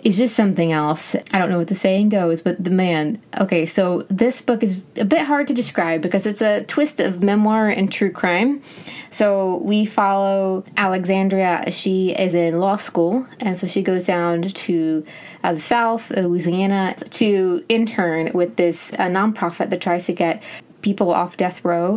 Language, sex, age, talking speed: English, female, 20-39, 180 wpm